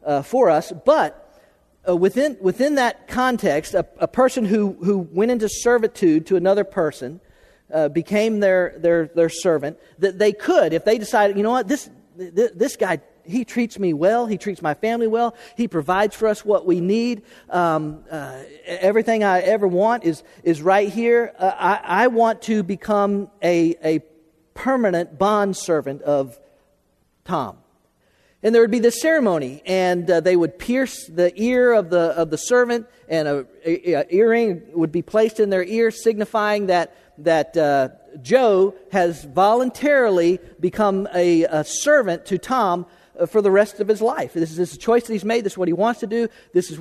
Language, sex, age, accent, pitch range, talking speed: English, male, 40-59, American, 170-225 Hz, 180 wpm